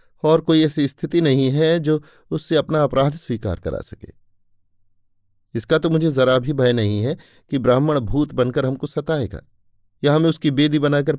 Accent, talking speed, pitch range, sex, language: native, 170 wpm, 100-140 Hz, male, Hindi